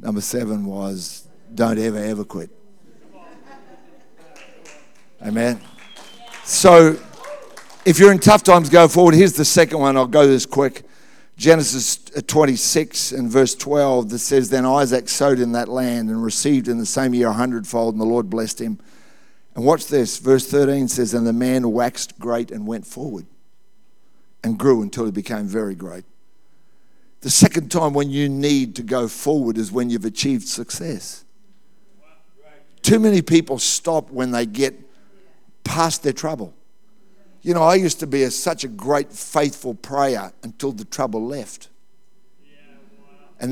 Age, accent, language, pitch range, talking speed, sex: 50-69, Australian, English, 120-165 Hz, 155 wpm, male